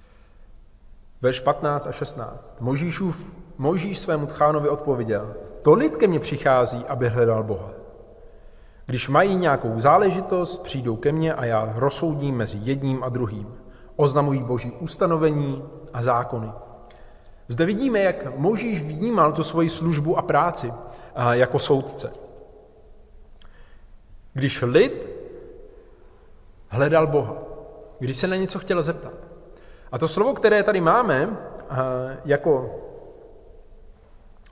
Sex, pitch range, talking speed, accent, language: male, 120-170 Hz, 115 wpm, native, Czech